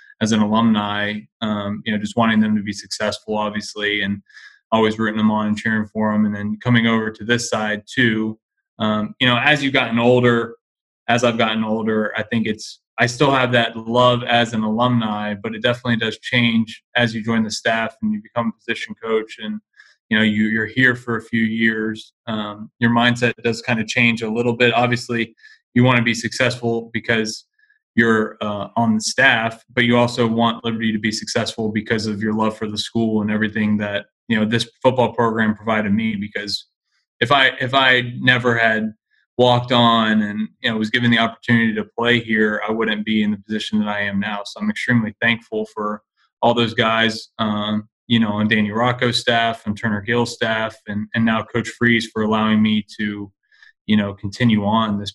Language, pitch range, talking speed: English, 110-120 Hz, 200 wpm